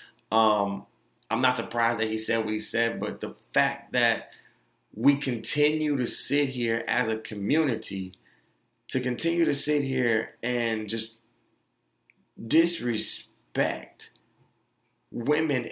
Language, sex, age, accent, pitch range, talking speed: English, male, 30-49, American, 110-150 Hz, 120 wpm